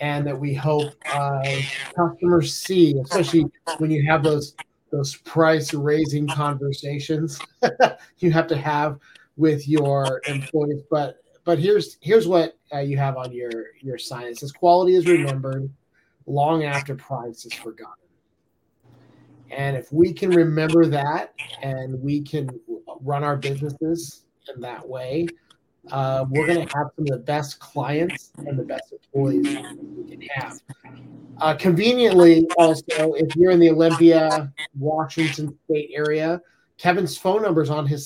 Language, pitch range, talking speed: English, 135-165 Hz, 145 wpm